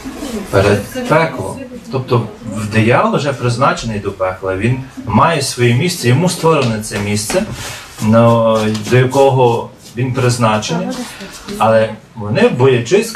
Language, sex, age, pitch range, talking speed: Ukrainian, male, 40-59, 115-175 Hz, 110 wpm